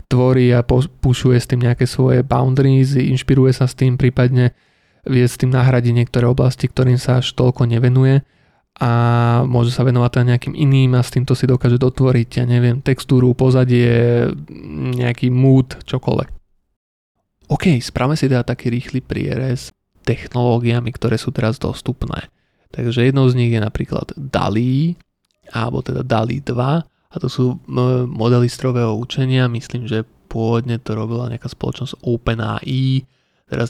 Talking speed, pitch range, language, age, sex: 150 wpm, 120-130 Hz, Slovak, 20-39, male